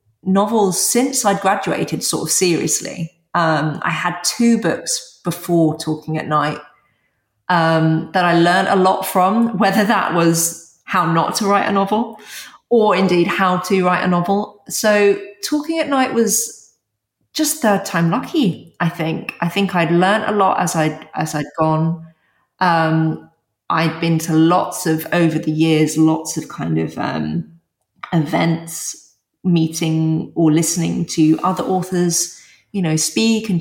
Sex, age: female, 30-49